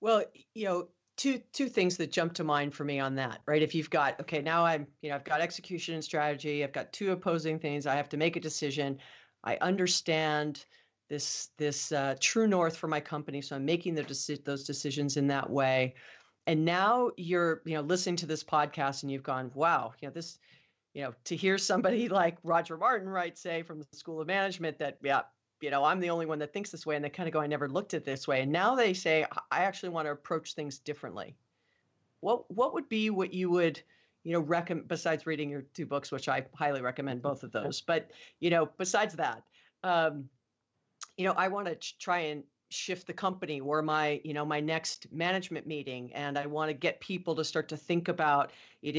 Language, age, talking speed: English, 40-59, 225 wpm